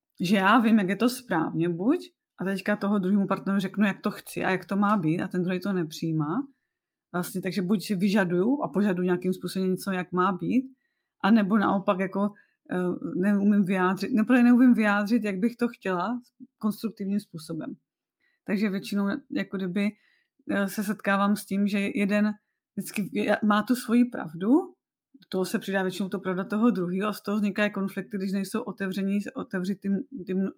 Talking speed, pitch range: 160 wpm, 185-220 Hz